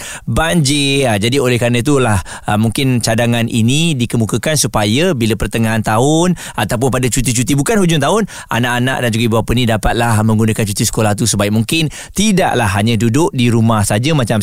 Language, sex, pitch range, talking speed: Malay, male, 110-150 Hz, 160 wpm